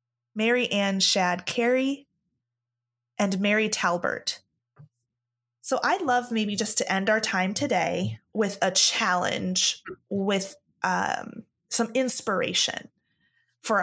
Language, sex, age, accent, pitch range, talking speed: English, female, 20-39, American, 180-220 Hz, 110 wpm